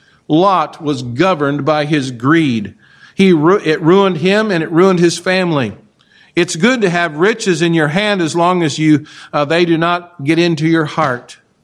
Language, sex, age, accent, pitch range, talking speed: English, male, 50-69, American, 150-195 Hz, 180 wpm